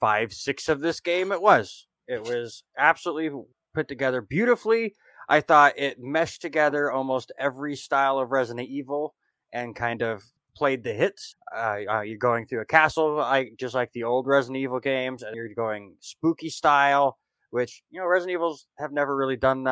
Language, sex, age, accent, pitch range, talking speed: English, male, 20-39, American, 120-150 Hz, 175 wpm